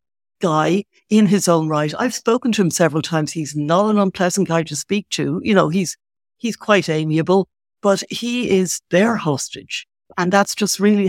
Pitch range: 155-200 Hz